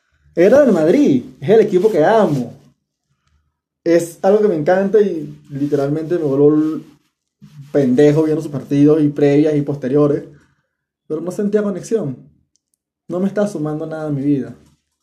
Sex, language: male, Spanish